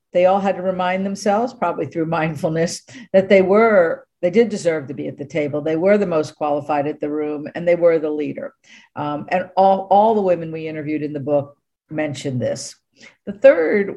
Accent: American